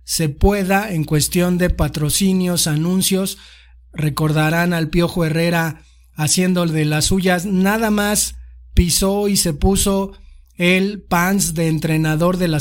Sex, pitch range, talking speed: male, 155-190 Hz, 130 wpm